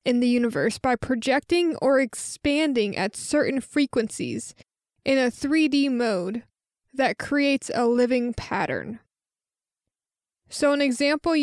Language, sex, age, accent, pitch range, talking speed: English, female, 20-39, American, 235-285 Hz, 115 wpm